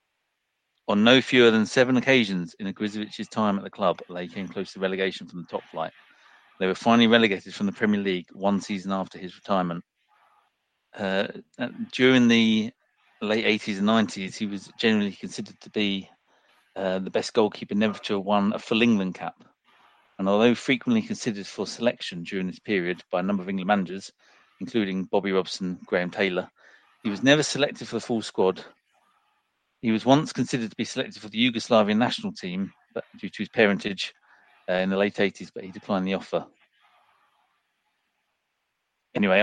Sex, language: male, English